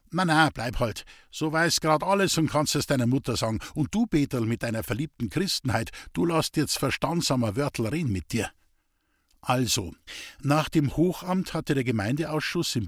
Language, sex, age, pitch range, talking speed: German, male, 50-69, 115-160 Hz, 170 wpm